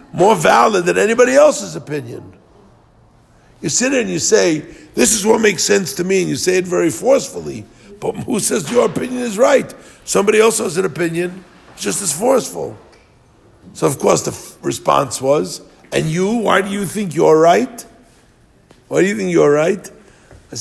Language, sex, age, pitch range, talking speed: English, male, 50-69, 145-200 Hz, 180 wpm